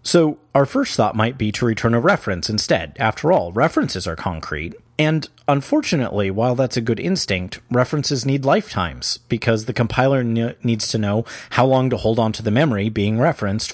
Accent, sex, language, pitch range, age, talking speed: American, male, English, 105-135 Hz, 30-49, 185 wpm